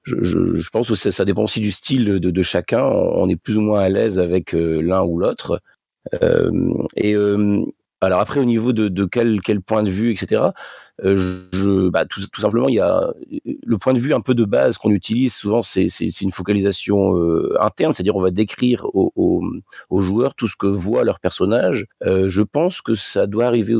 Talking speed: 225 wpm